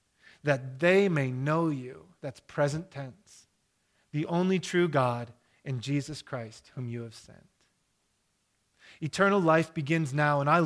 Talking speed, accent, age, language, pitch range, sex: 140 wpm, American, 30-49, English, 125-155 Hz, male